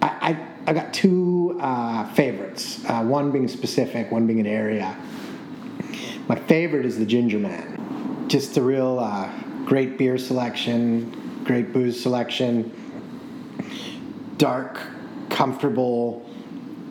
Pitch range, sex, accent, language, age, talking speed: 110-135 Hz, male, American, English, 30-49, 115 wpm